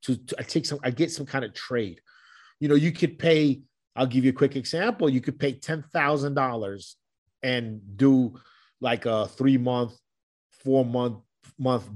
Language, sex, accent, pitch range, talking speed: English, male, American, 125-155 Hz, 170 wpm